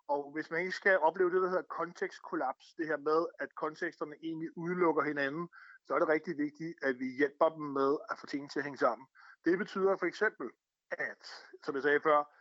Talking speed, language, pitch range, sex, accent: 215 wpm, Danish, 155-190 Hz, male, native